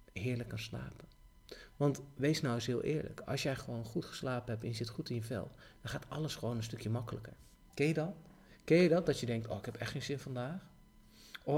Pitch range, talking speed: 115-145 Hz, 240 wpm